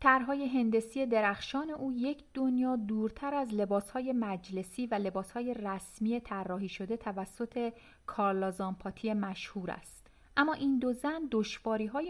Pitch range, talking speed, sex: 195-255 Hz, 125 wpm, female